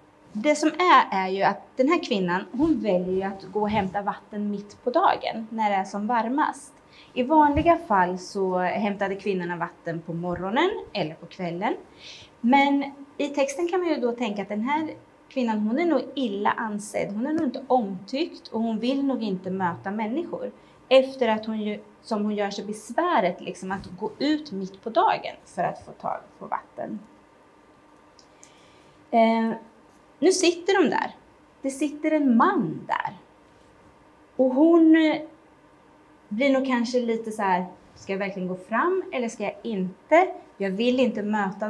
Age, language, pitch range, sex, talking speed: 30-49, Swedish, 200-290 Hz, female, 165 wpm